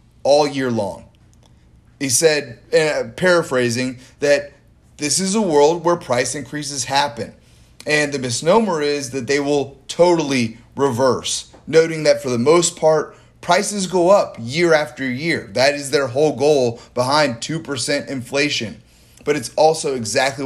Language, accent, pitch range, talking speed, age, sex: English, American, 125-165 Hz, 145 wpm, 30-49, male